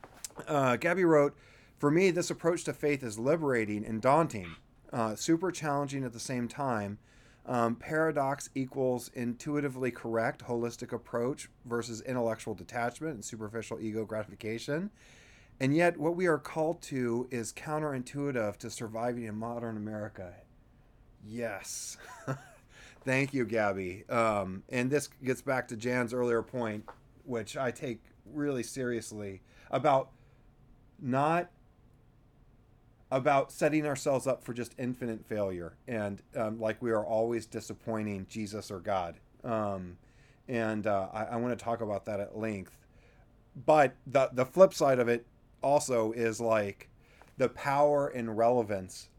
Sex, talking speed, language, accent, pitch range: male, 135 wpm, English, American, 110-130 Hz